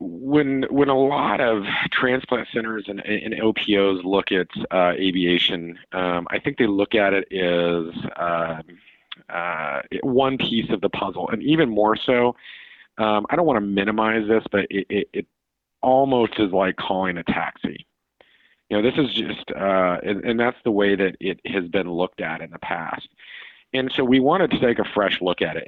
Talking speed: 190 wpm